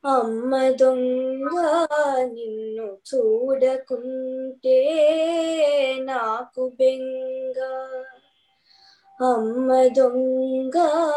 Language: Telugu